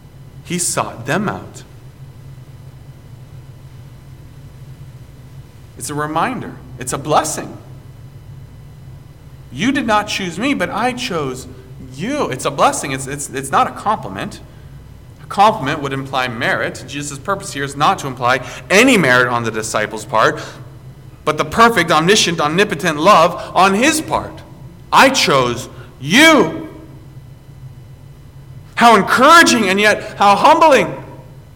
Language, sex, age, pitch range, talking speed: English, male, 40-59, 130-155 Hz, 120 wpm